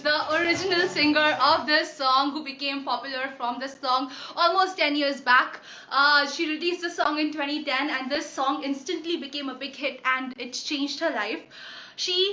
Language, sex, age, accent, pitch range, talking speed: Hindi, female, 20-39, native, 260-320 Hz, 175 wpm